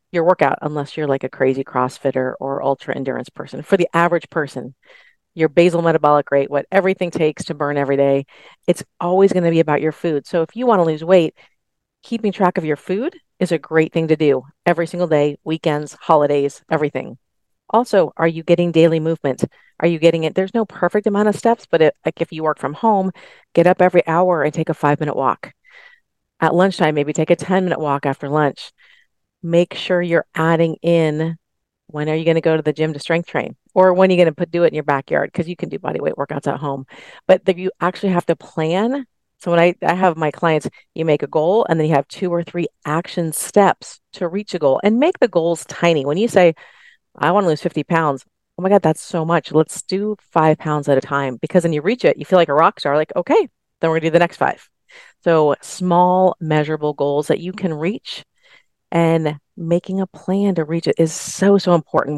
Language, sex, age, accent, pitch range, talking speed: English, female, 40-59, American, 155-185 Hz, 225 wpm